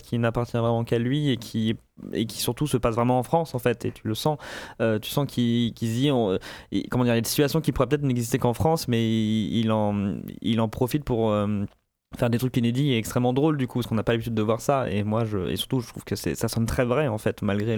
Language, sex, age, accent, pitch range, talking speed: French, male, 20-39, French, 110-130 Hz, 275 wpm